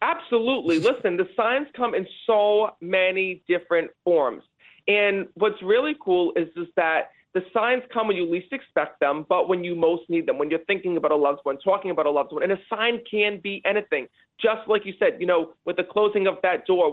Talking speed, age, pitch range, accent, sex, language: 215 wpm, 30-49, 175-225 Hz, American, male, English